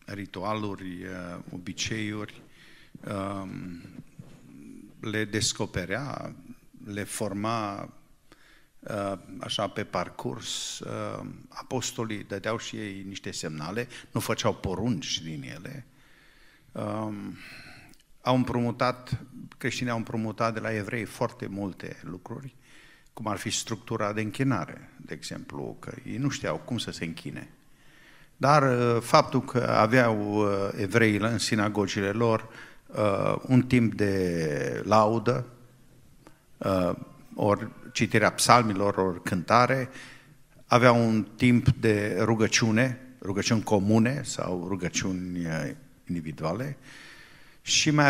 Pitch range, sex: 105-130 Hz, male